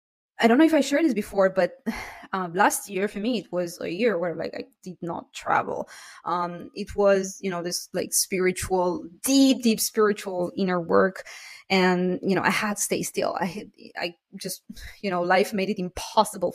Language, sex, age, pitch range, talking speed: English, female, 20-39, 180-230 Hz, 200 wpm